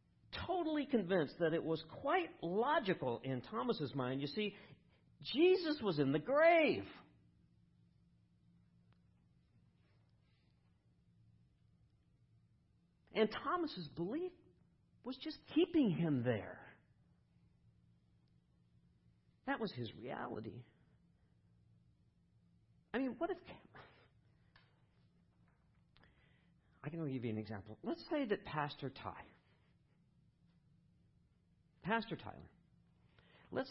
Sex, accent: male, American